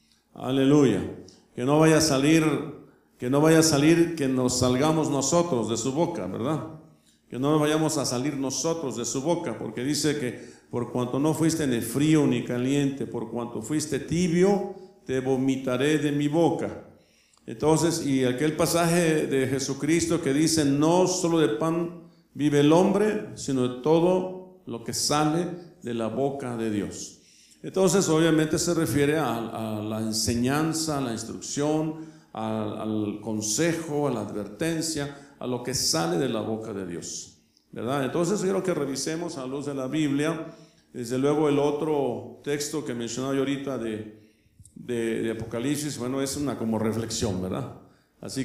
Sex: male